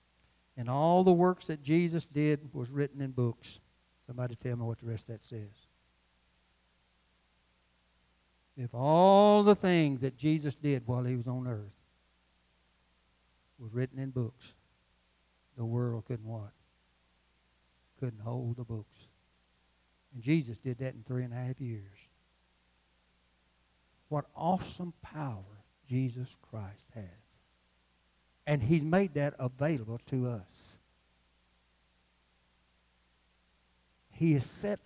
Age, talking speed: 60-79, 120 wpm